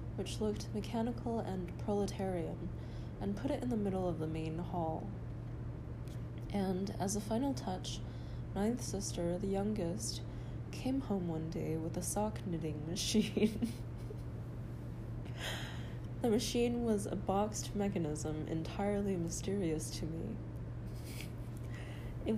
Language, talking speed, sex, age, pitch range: English, 120 wpm, female, 20-39, 115-195 Hz